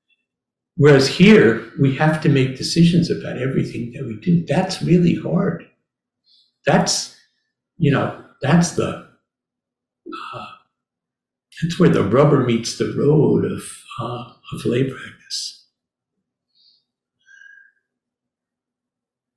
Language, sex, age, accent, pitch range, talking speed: English, male, 60-79, American, 130-170 Hz, 100 wpm